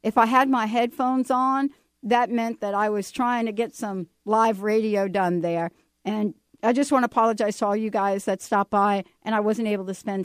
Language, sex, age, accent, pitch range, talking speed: English, female, 60-79, American, 180-235 Hz, 220 wpm